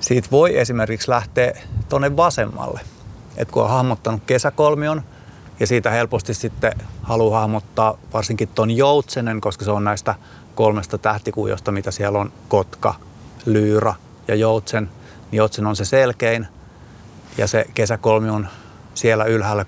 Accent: native